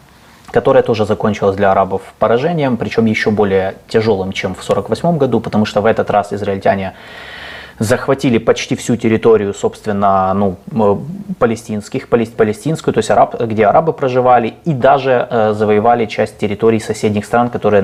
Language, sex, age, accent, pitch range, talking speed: Russian, male, 20-39, native, 100-125 Hz, 140 wpm